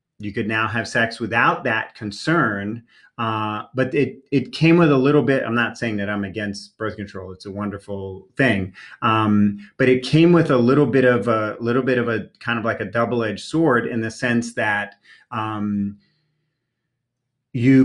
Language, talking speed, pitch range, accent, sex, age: English, 175 wpm, 110-130 Hz, American, male, 30-49